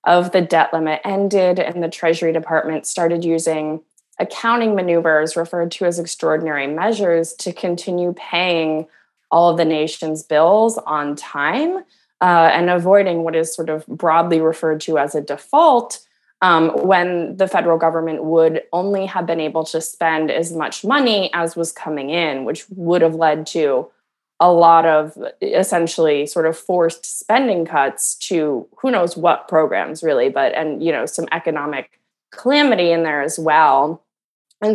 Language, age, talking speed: English, 20-39, 160 wpm